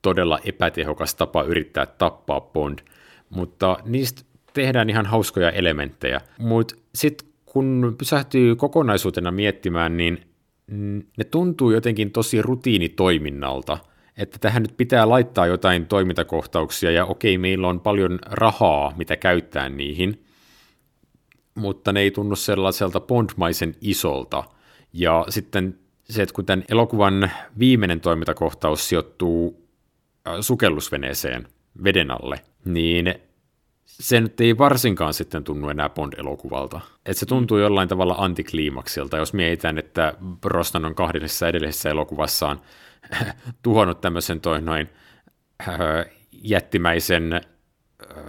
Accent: native